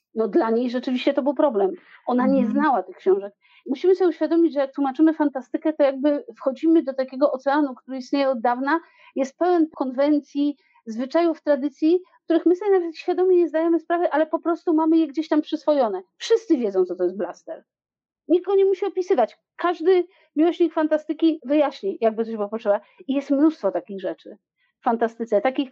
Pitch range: 245-330 Hz